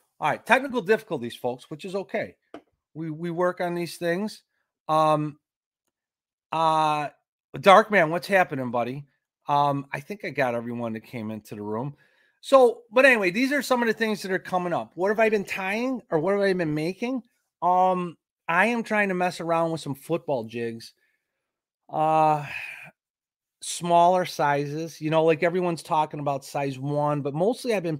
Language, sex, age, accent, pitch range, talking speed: English, male, 30-49, American, 130-175 Hz, 175 wpm